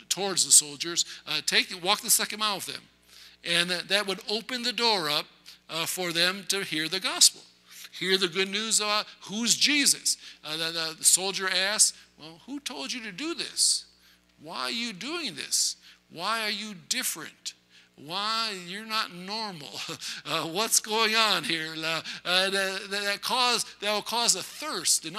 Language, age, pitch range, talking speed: English, 60-79, 165-200 Hz, 180 wpm